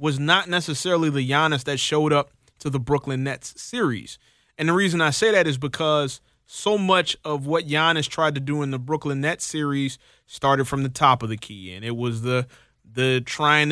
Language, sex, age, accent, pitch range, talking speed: English, male, 20-39, American, 135-160 Hz, 205 wpm